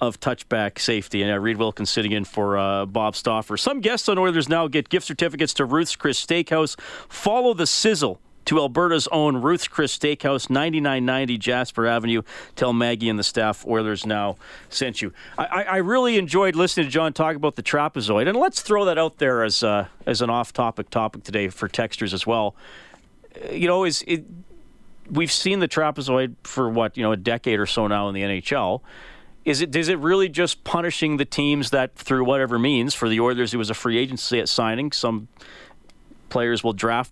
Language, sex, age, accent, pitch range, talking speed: English, male, 40-59, American, 110-150 Hz, 200 wpm